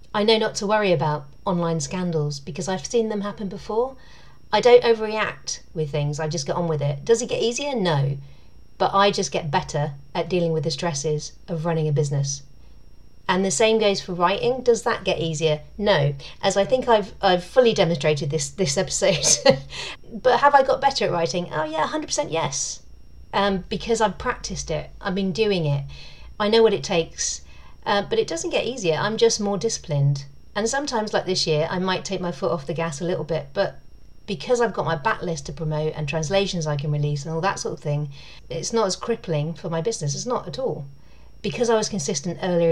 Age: 40-59